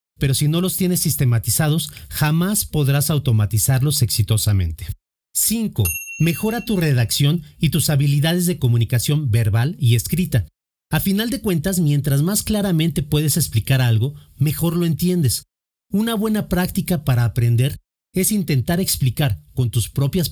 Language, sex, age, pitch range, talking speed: Spanish, male, 40-59, 120-175 Hz, 135 wpm